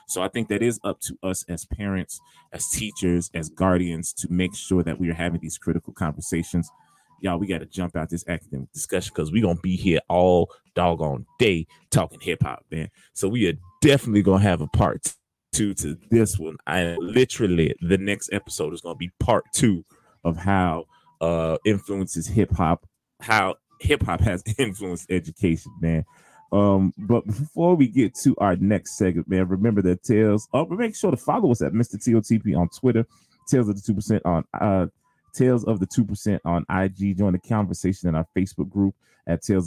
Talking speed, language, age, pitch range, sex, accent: 190 wpm, English, 20-39, 85-105 Hz, male, American